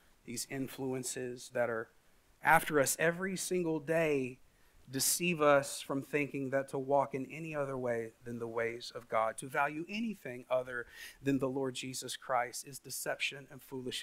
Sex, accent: male, American